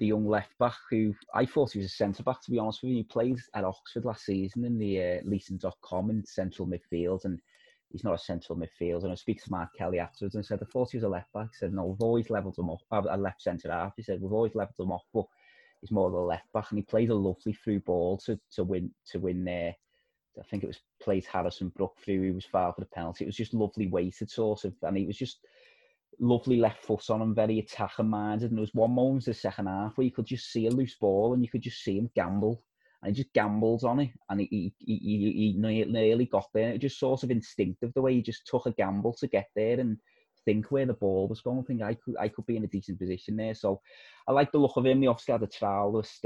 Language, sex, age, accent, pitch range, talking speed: English, male, 20-39, British, 95-120 Hz, 265 wpm